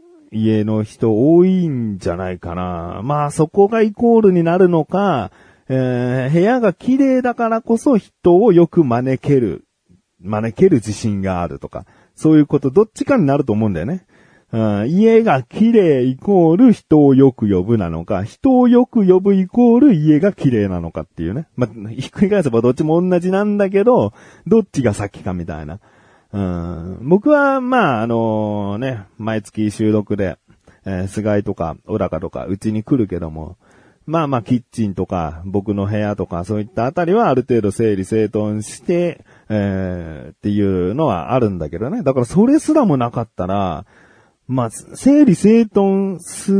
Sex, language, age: male, Japanese, 40-59